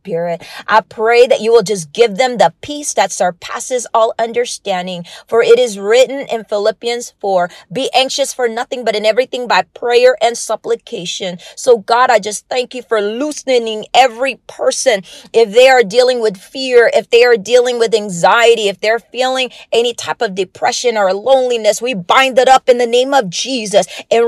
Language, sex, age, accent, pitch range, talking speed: English, female, 30-49, American, 195-245 Hz, 180 wpm